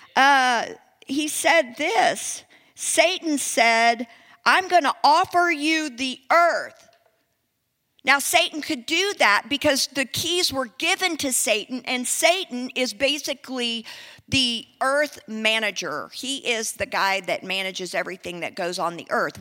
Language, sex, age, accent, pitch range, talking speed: English, female, 50-69, American, 255-330 Hz, 135 wpm